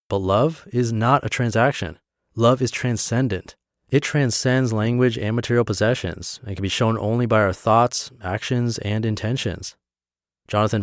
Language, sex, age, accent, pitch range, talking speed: English, male, 30-49, American, 95-120 Hz, 150 wpm